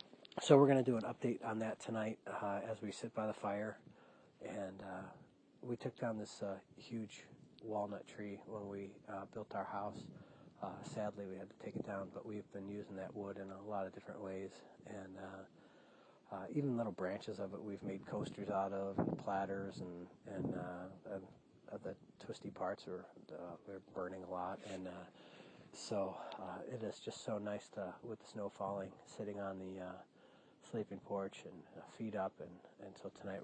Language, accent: English, American